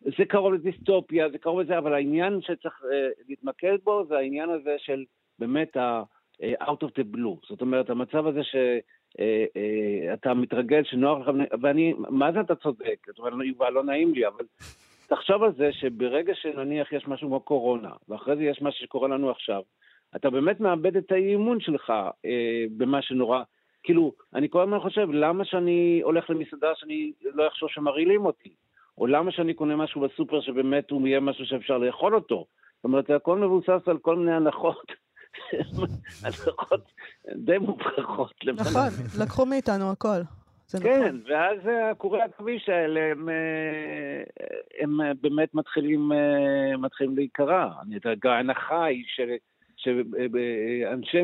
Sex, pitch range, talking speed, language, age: male, 130-185 Hz, 150 wpm, Hebrew, 50-69